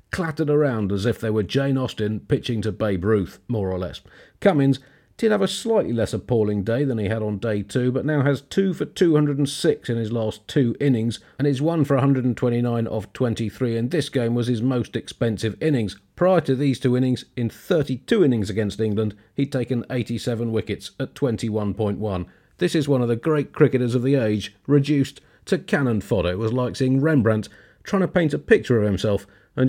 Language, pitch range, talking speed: English, 105-140 Hz, 200 wpm